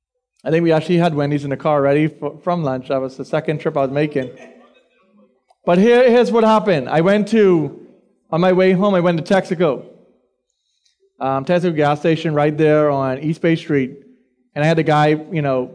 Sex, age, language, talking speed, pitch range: male, 30-49, English, 205 wpm, 140-190 Hz